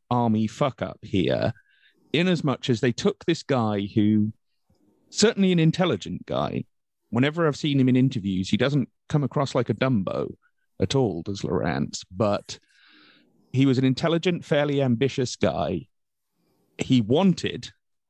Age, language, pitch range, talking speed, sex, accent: 40-59, English, 105-135 Hz, 145 wpm, male, British